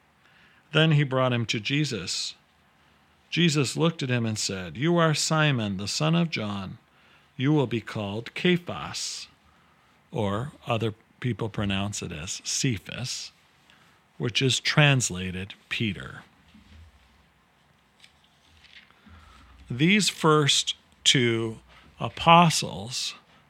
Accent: American